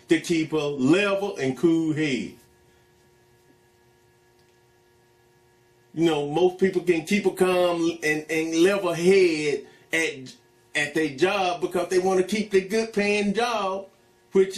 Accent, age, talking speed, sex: American, 30-49, 130 wpm, male